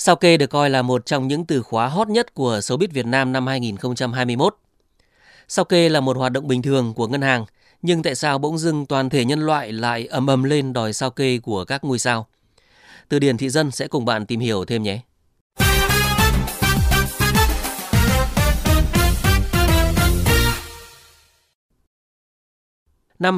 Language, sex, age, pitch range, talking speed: Vietnamese, male, 20-39, 120-160 Hz, 155 wpm